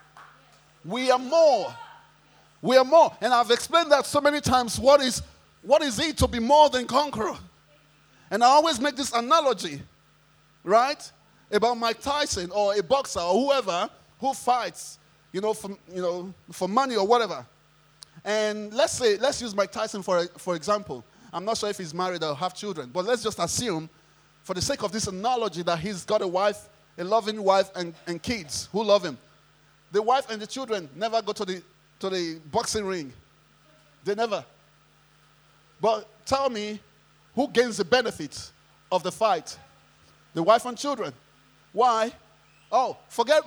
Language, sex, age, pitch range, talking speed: English, male, 30-49, 180-255 Hz, 170 wpm